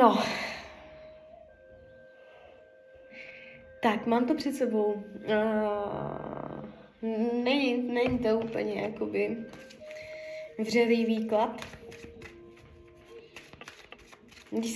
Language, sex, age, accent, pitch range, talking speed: Czech, female, 20-39, native, 215-255 Hz, 55 wpm